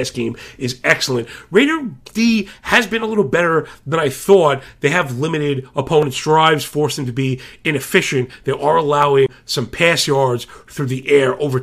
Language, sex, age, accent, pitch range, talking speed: English, male, 40-59, American, 125-160 Hz, 170 wpm